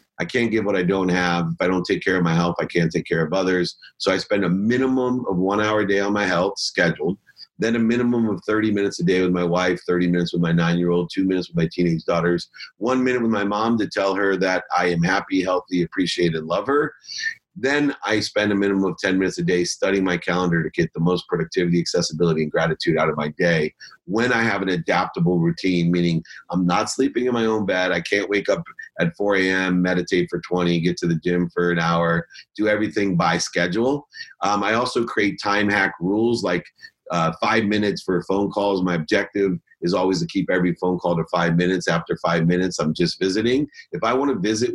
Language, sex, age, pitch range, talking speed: English, male, 40-59, 90-110 Hz, 225 wpm